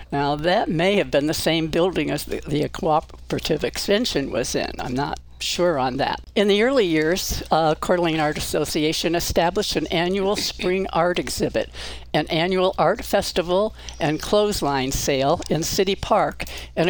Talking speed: 165 wpm